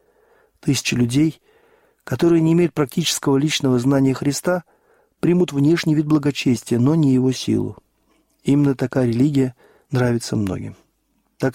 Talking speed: 120 wpm